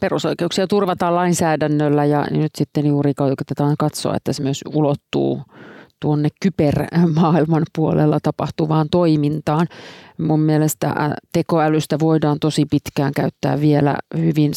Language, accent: Finnish, native